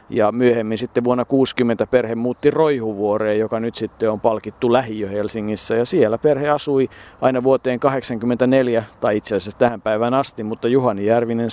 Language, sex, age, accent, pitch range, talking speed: Finnish, male, 50-69, native, 110-130 Hz, 155 wpm